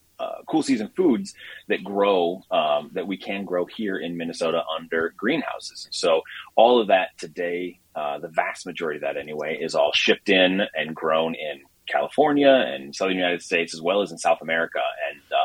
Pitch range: 85-125 Hz